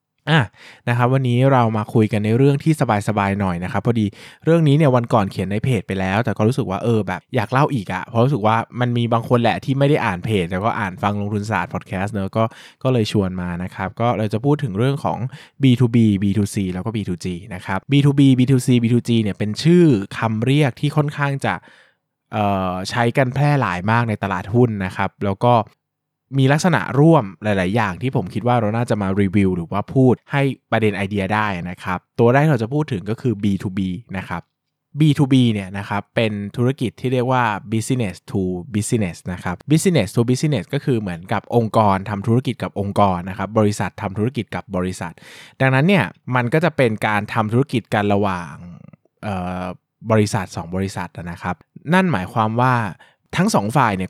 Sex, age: male, 20-39